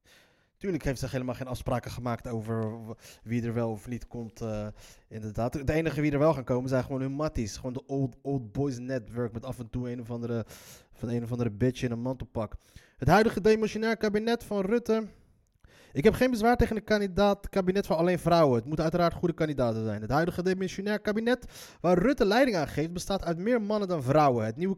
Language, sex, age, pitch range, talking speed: Dutch, male, 20-39, 120-180 Hz, 210 wpm